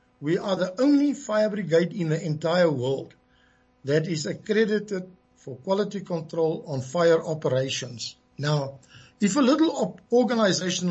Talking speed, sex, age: 130 wpm, male, 60-79